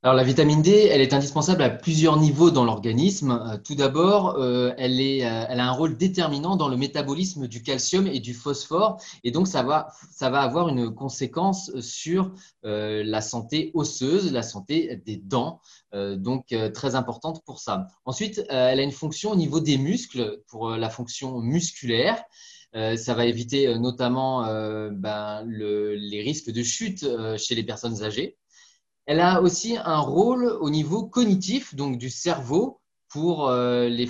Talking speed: 160 wpm